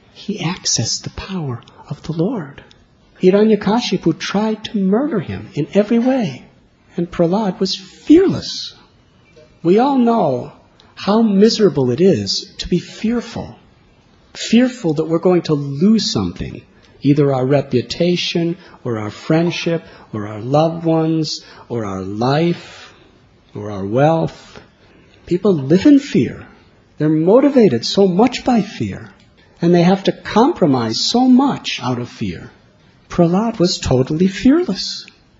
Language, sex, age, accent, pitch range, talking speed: English, male, 50-69, American, 150-205 Hz, 130 wpm